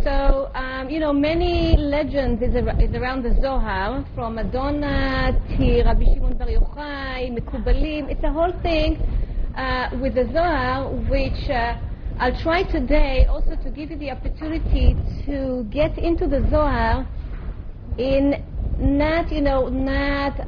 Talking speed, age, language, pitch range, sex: 135 wpm, 30-49, English, 250-300 Hz, female